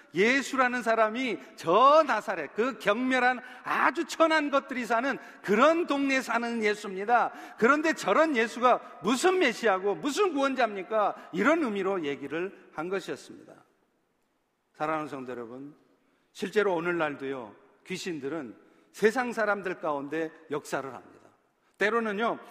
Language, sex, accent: Korean, male, native